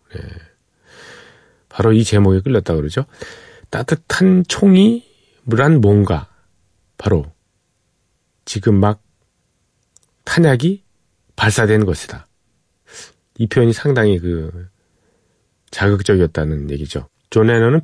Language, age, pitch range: Korean, 40-59, 95-135 Hz